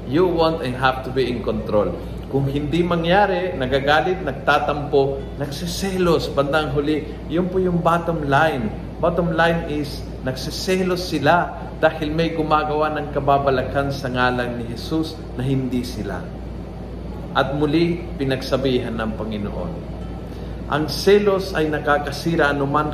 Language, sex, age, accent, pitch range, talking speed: Filipino, male, 50-69, native, 130-160 Hz, 125 wpm